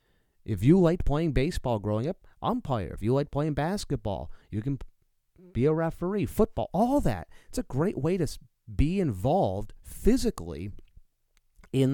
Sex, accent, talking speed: male, American, 150 wpm